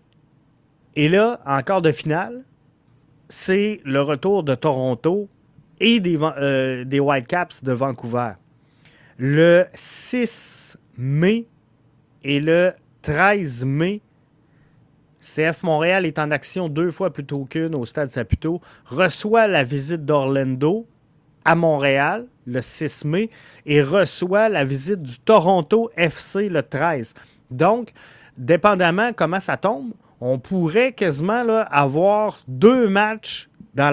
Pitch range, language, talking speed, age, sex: 140-185 Hz, French, 120 wpm, 30-49, male